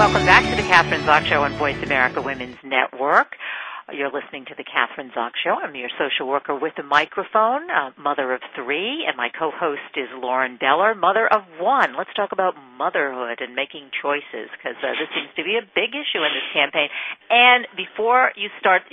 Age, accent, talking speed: 50-69, American, 195 wpm